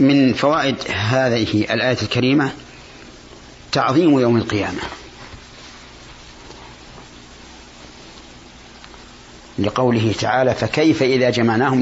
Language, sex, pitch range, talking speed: Arabic, male, 105-130 Hz, 65 wpm